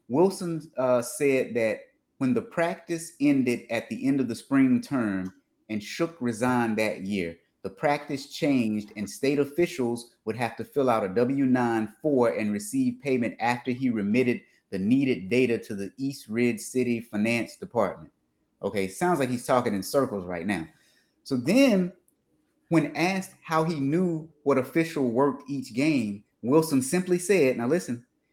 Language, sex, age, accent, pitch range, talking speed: English, male, 30-49, American, 115-160 Hz, 160 wpm